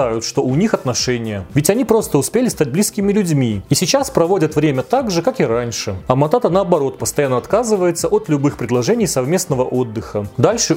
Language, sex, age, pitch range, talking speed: Russian, male, 30-49, 125-195 Hz, 175 wpm